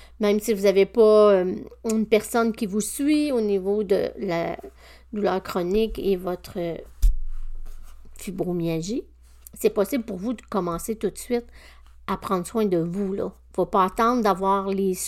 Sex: female